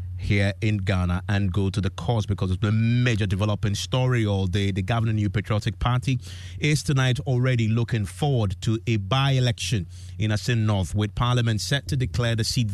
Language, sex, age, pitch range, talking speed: English, male, 30-49, 100-125 Hz, 190 wpm